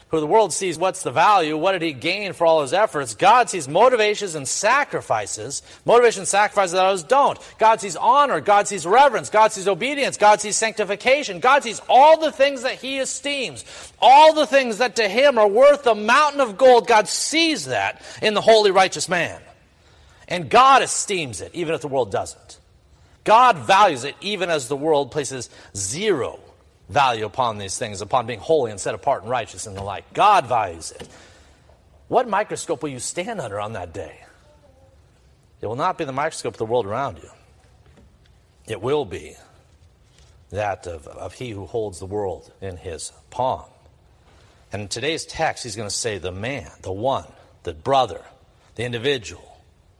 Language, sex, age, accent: English, male, 40-59, American